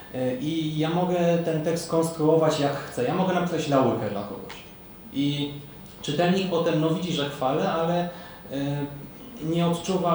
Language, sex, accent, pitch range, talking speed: Polish, male, native, 130-160 Hz, 150 wpm